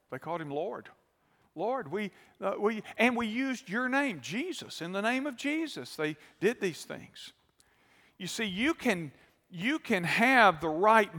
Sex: male